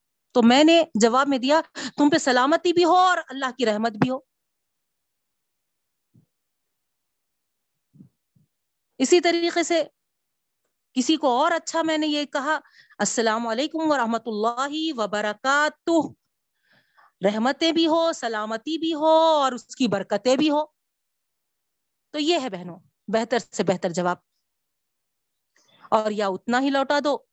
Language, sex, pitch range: Urdu, female, 205-295 Hz